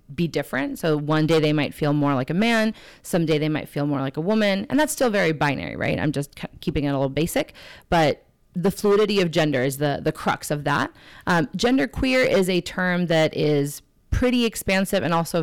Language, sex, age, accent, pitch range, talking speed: English, female, 30-49, American, 155-205 Hz, 220 wpm